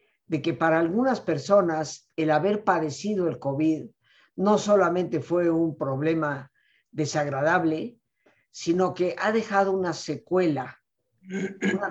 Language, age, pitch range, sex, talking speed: Spanish, 50-69, 140-175 Hz, female, 115 wpm